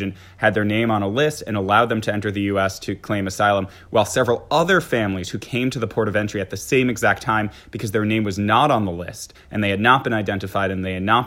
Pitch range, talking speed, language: 105-125 Hz, 265 wpm, English